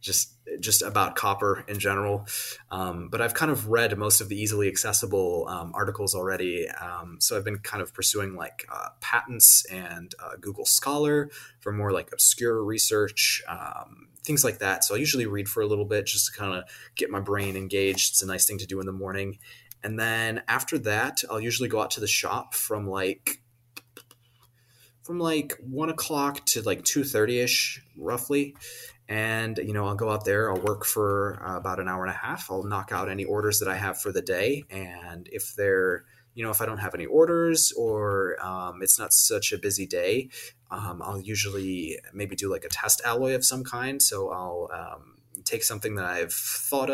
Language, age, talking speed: English, 20-39, 200 wpm